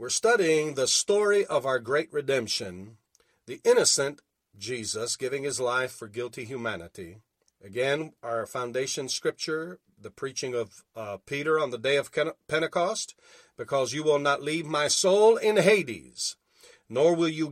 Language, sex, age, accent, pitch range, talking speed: English, male, 50-69, American, 120-175 Hz, 145 wpm